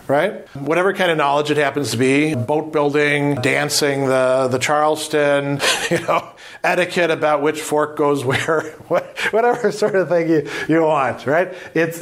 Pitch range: 140-165 Hz